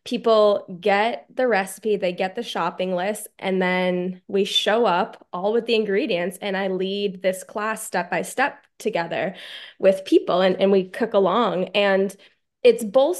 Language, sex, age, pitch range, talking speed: English, female, 20-39, 190-230 Hz, 160 wpm